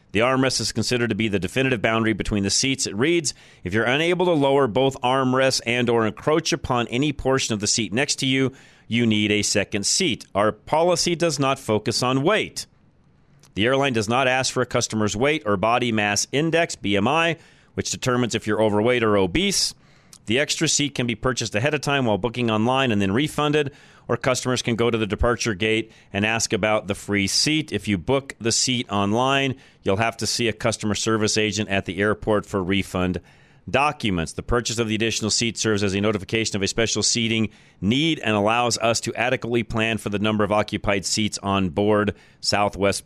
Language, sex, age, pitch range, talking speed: English, male, 40-59, 105-130 Hz, 200 wpm